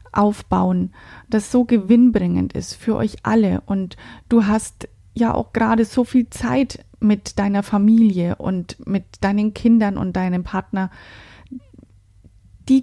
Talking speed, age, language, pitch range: 130 wpm, 30-49, German, 165-235 Hz